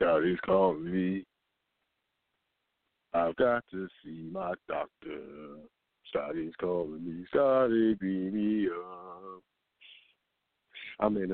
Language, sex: English, male